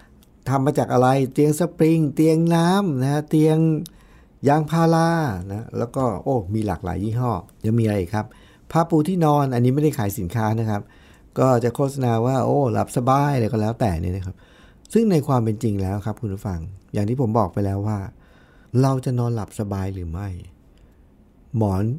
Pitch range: 100-135 Hz